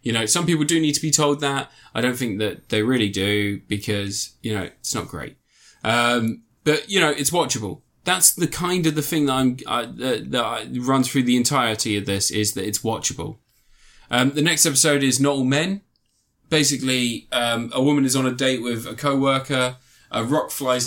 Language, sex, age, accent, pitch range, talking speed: English, male, 20-39, British, 110-130 Hz, 200 wpm